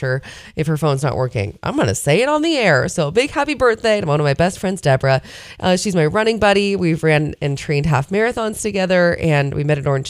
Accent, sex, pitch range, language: American, female, 140-205 Hz, English